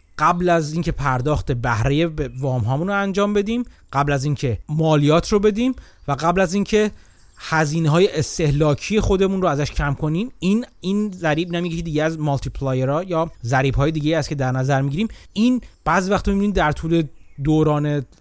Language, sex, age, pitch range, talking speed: Persian, male, 30-49, 145-185 Hz, 170 wpm